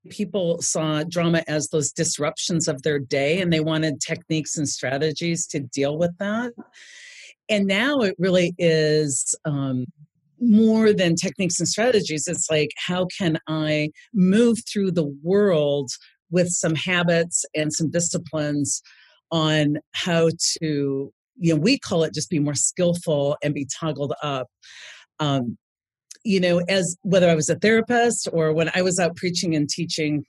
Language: English